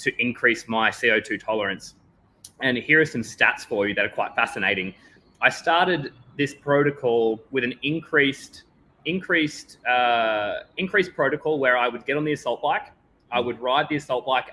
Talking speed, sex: 170 wpm, male